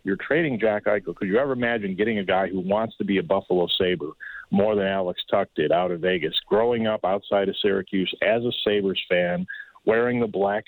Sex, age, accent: male, 40-59, American